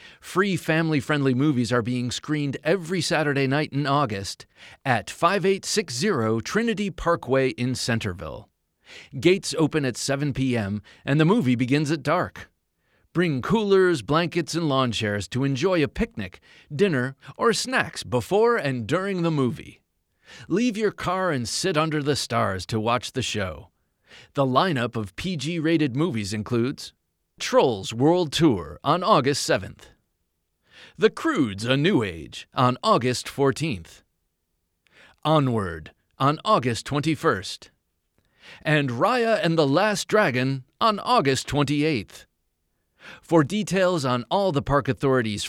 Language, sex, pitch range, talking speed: English, male, 115-170 Hz, 130 wpm